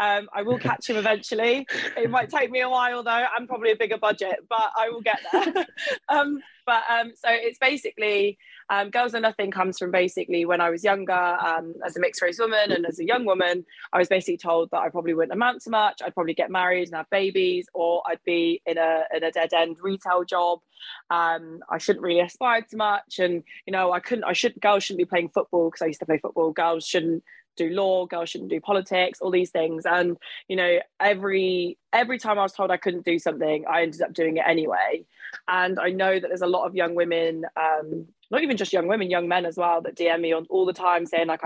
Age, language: 20-39, English